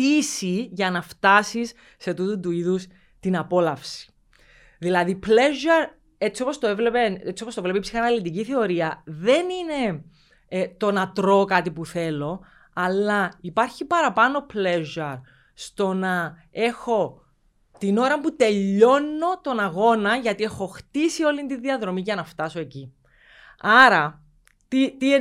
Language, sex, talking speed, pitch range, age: Greek, female, 125 wpm, 175-255 Hz, 20-39